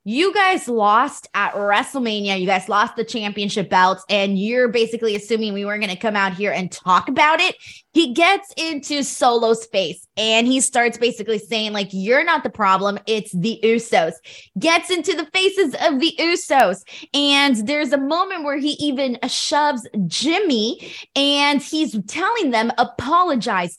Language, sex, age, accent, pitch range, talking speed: English, female, 20-39, American, 215-295 Hz, 165 wpm